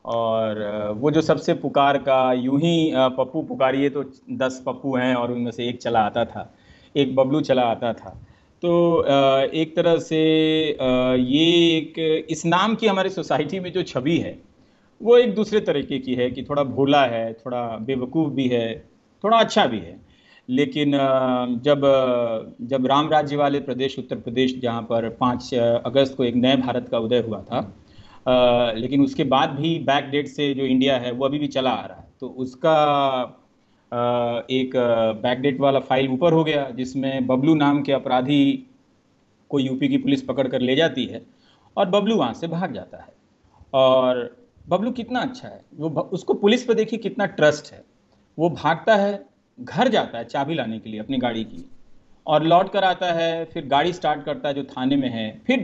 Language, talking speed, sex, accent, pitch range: Hindi, 180 wpm, male, native, 125-160 Hz